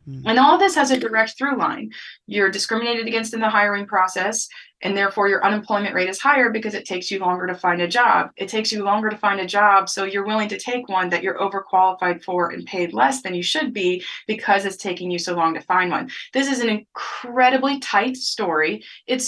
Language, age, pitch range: English, 20-39, 185-235 Hz